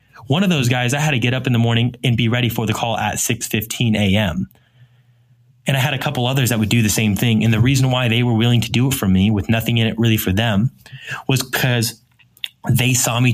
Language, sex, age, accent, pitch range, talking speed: English, male, 20-39, American, 105-130 Hz, 255 wpm